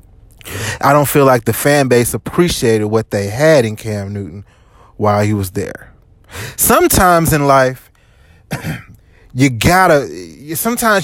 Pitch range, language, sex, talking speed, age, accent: 105-140 Hz, English, male, 130 wpm, 20-39, American